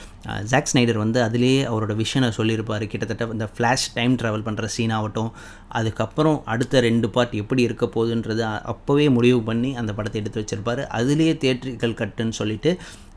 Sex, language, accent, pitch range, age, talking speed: male, Tamil, native, 110-130 Hz, 20-39, 145 wpm